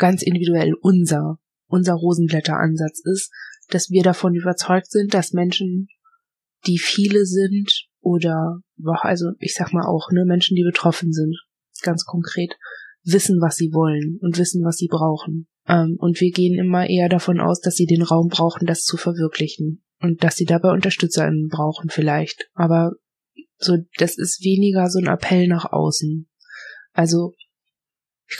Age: 20-39